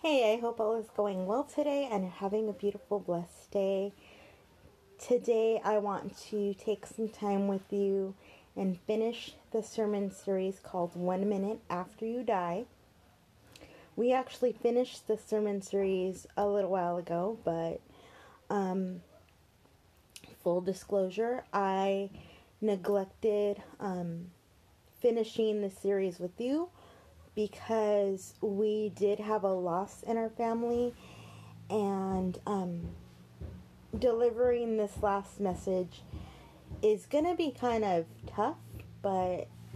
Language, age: English, 20-39